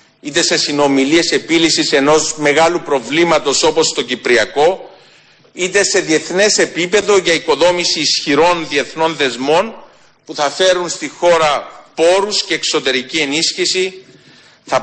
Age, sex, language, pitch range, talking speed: 50-69, male, Greek, 145-185 Hz, 115 wpm